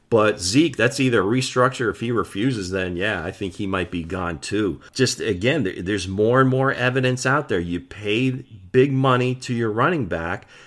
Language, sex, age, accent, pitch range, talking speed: English, male, 40-59, American, 100-125 Hz, 190 wpm